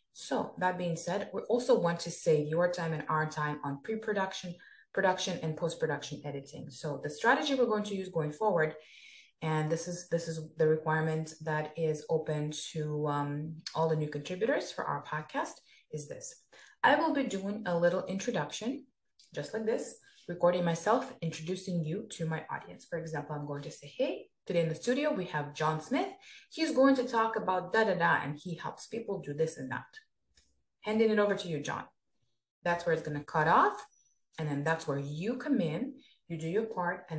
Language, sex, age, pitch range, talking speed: English, female, 20-39, 155-220 Hz, 195 wpm